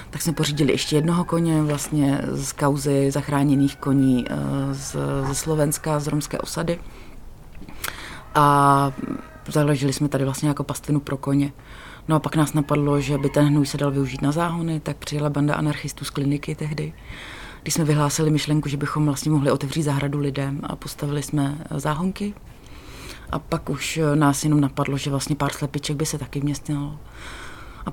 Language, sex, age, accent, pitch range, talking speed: Czech, female, 30-49, native, 140-150 Hz, 165 wpm